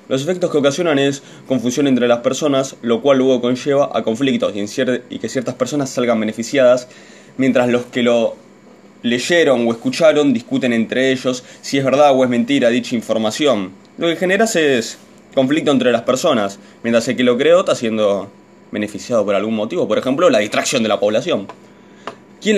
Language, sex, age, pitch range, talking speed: Spanish, male, 20-39, 120-150 Hz, 175 wpm